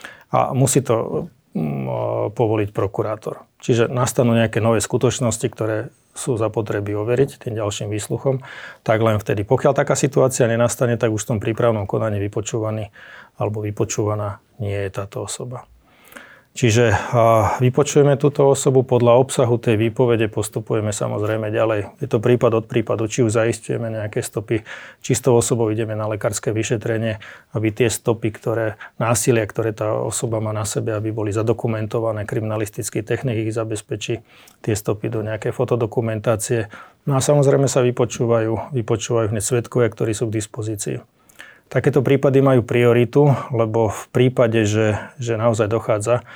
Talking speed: 145 wpm